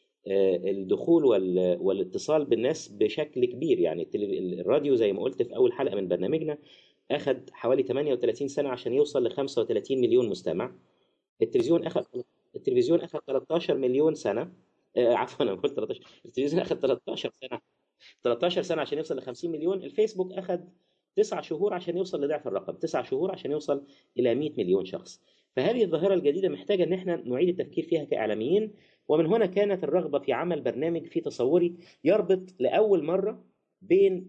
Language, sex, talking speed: Arabic, male, 150 wpm